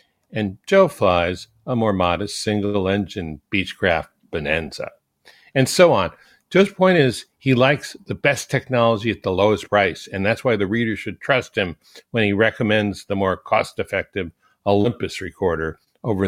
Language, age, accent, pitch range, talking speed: English, 60-79, American, 95-120 Hz, 150 wpm